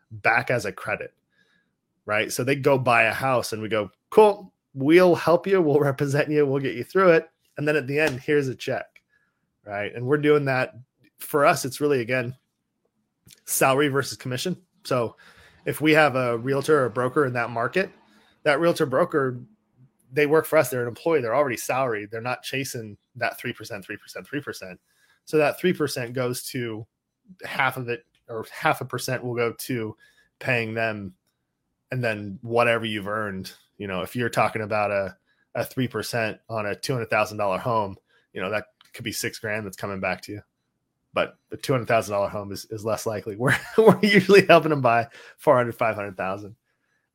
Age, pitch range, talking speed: 20-39, 110-150 Hz, 190 wpm